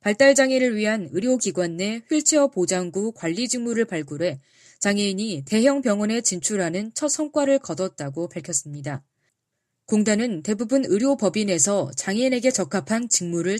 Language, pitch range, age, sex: Korean, 175-260 Hz, 20-39, female